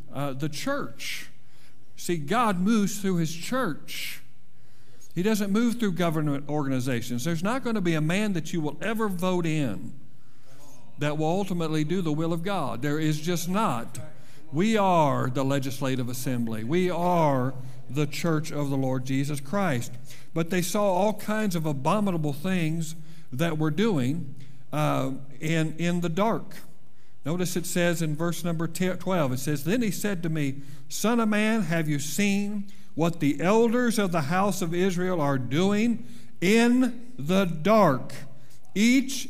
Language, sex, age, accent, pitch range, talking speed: English, male, 50-69, American, 135-185 Hz, 160 wpm